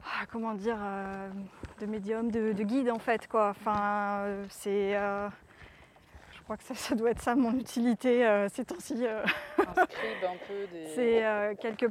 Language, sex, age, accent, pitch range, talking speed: French, female, 20-39, French, 205-235 Hz, 160 wpm